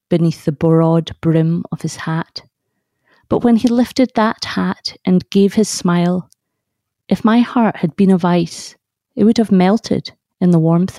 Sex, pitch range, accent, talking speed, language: female, 170-210 Hz, British, 170 wpm, English